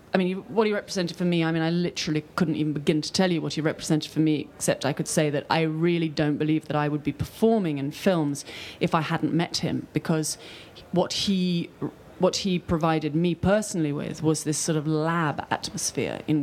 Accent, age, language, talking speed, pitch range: British, 30-49, English, 215 wpm, 155-195 Hz